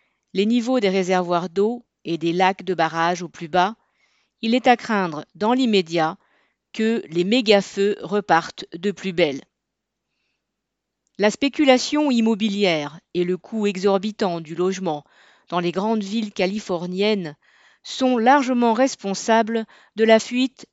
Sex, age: female, 40-59